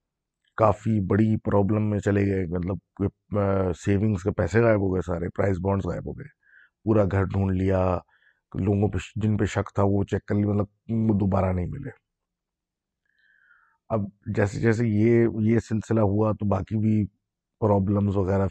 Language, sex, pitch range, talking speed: Urdu, male, 90-105 Hz, 160 wpm